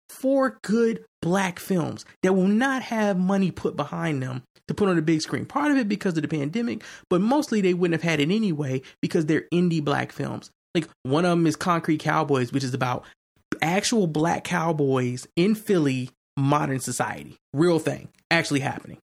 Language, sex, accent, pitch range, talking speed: English, male, American, 135-175 Hz, 185 wpm